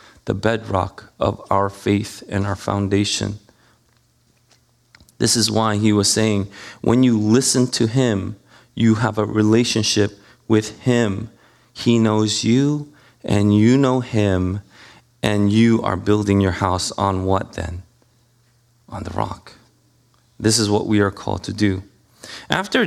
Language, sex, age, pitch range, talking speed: English, male, 30-49, 105-125 Hz, 140 wpm